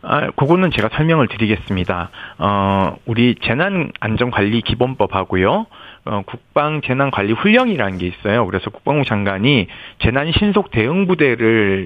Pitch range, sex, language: 105-155 Hz, male, Korean